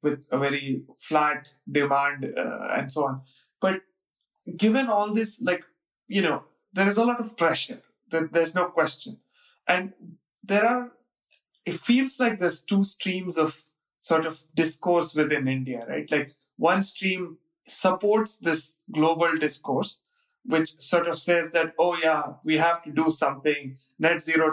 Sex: male